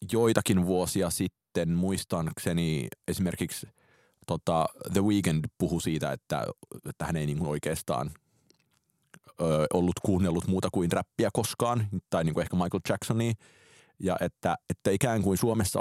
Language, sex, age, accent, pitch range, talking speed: Finnish, male, 30-49, native, 85-100 Hz, 130 wpm